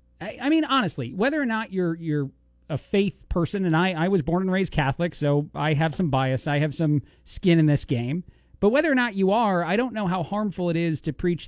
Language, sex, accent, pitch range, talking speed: English, male, American, 140-195 Hz, 240 wpm